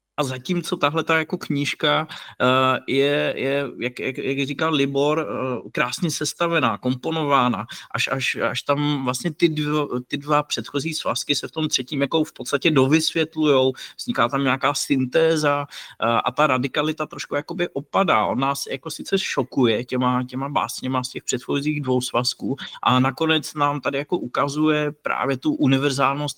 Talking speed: 145 wpm